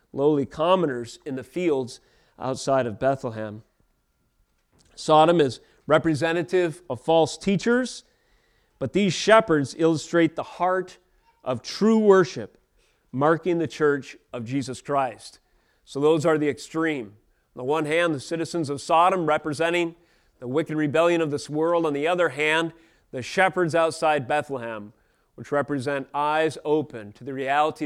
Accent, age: American, 30-49